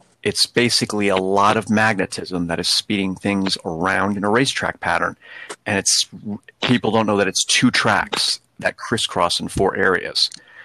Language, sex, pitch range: English, male, 95-110 Hz